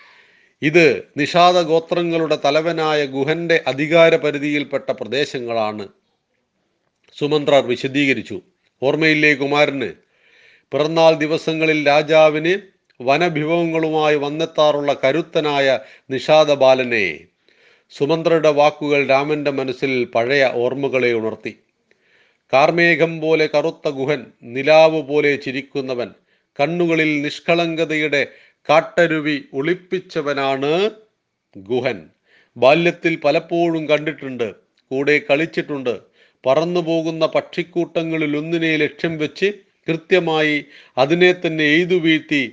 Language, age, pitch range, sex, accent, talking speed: Hindi, 40-59, 140-165 Hz, male, native, 50 wpm